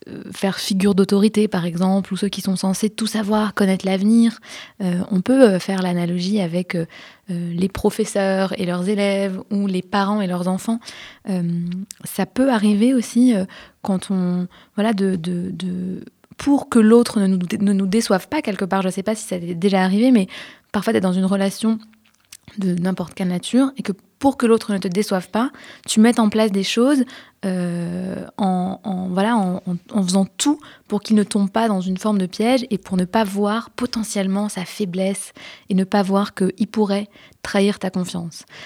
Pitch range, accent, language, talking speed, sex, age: 185-220 Hz, French, French, 195 wpm, female, 20-39